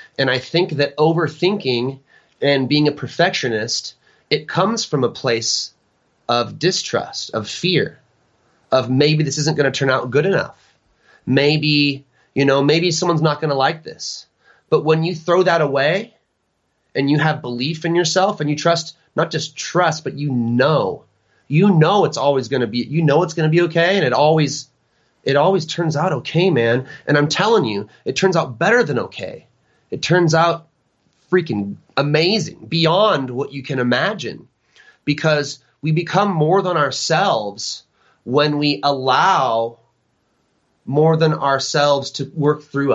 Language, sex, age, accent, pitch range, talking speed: English, male, 30-49, American, 130-165 Hz, 165 wpm